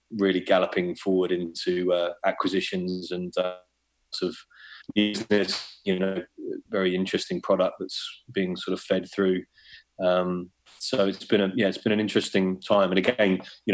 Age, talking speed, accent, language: 30-49, 155 wpm, British, English